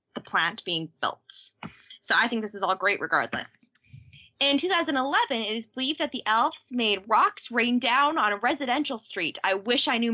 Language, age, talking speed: English, 10-29, 190 wpm